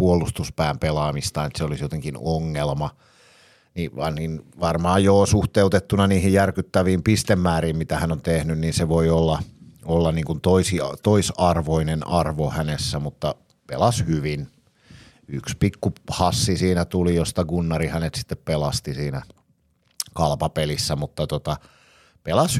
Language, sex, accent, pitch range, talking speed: Finnish, male, native, 75-95 Hz, 125 wpm